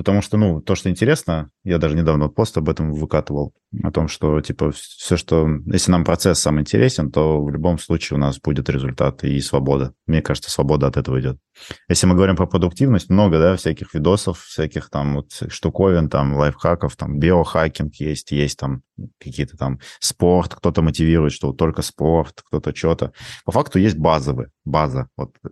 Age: 20-39